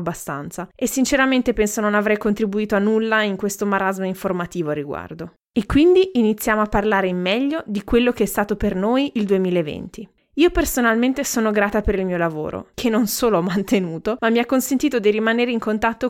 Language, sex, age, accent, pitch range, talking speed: Italian, female, 20-39, native, 180-220 Hz, 195 wpm